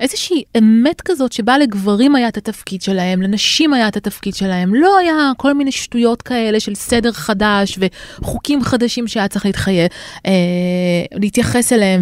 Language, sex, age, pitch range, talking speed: Hebrew, female, 20-39, 185-245 Hz, 150 wpm